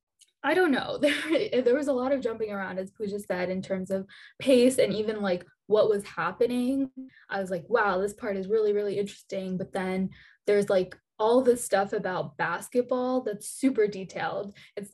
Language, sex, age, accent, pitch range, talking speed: English, female, 10-29, American, 185-230 Hz, 190 wpm